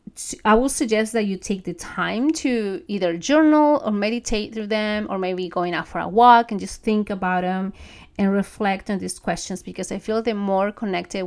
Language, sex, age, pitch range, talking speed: English, female, 30-49, 180-210 Hz, 200 wpm